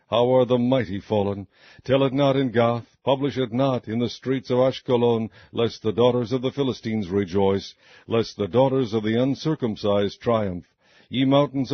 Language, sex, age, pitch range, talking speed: English, male, 60-79, 105-125 Hz, 175 wpm